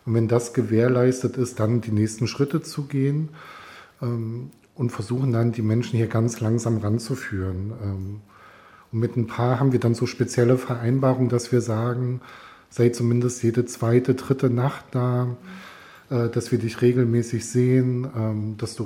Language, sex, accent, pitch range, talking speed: German, male, German, 110-130 Hz, 160 wpm